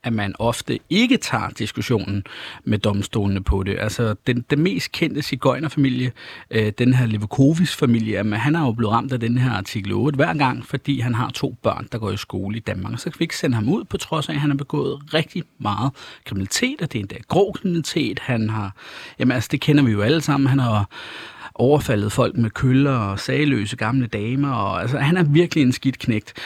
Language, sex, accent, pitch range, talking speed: Danish, male, native, 115-150 Hz, 215 wpm